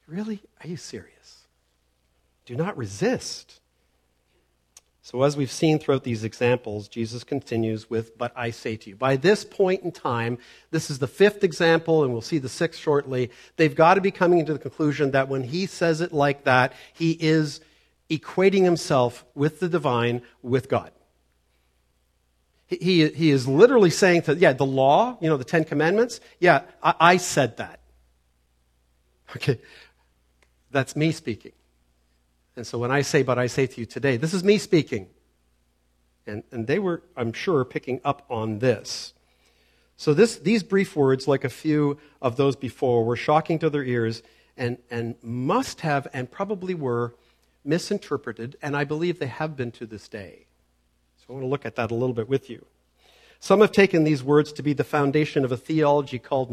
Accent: American